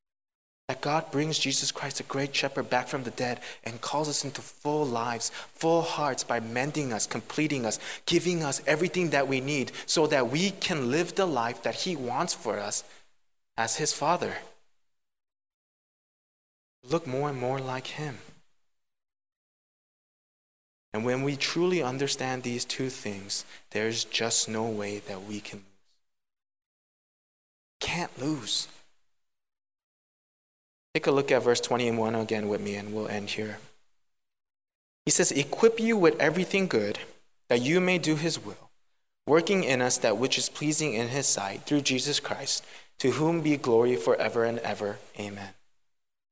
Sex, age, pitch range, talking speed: male, 20-39, 115-155 Hz, 150 wpm